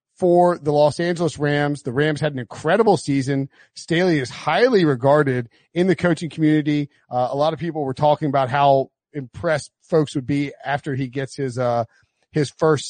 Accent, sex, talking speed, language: American, male, 180 wpm, English